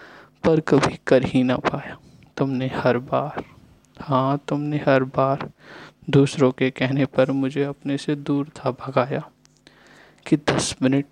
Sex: male